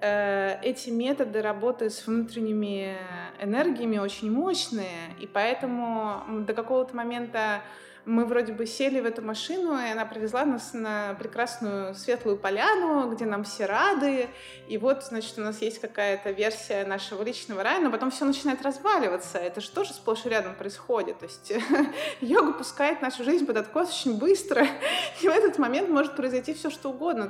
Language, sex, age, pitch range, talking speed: Russian, female, 20-39, 200-250 Hz, 165 wpm